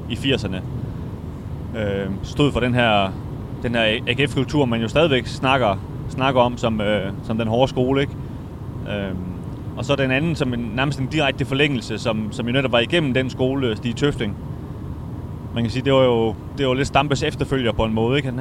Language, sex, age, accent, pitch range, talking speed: Danish, male, 30-49, native, 110-135 Hz, 200 wpm